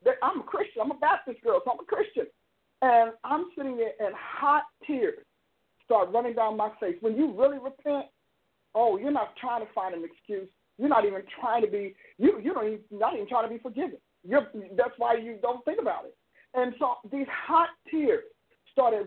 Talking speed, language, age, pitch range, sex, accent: 200 wpm, English, 50-69, 240-315 Hz, male, American